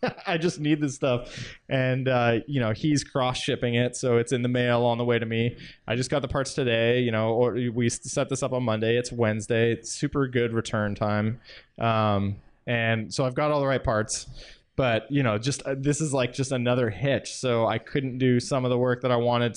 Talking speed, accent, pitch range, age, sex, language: 235 wpm, American, 115-135 Hz, 20-39, male, English